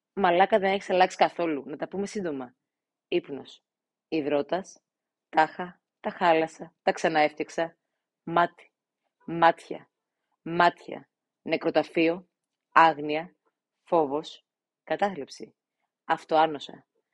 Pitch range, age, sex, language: 165-220 Hz, 30-49, female, Greek